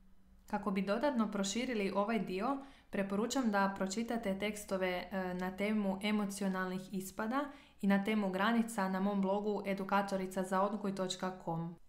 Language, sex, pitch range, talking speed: Croatian, female, 190-225 Hz, 110 wpm